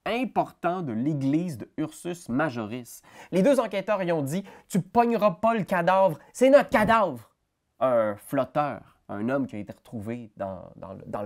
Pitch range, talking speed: 110-175 Hz, 155 wpm